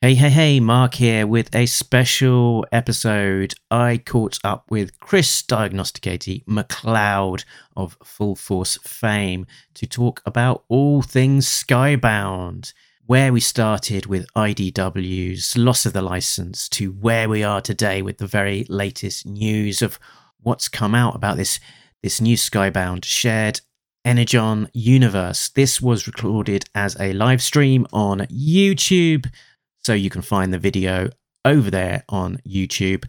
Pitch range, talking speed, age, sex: 100-130 Hz, 140 wpm, 40-59, male